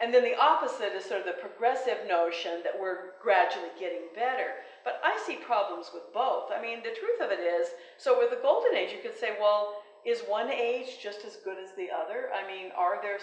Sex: female